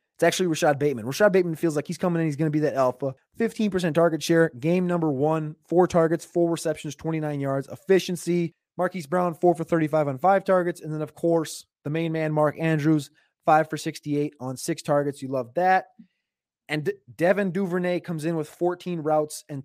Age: 20-39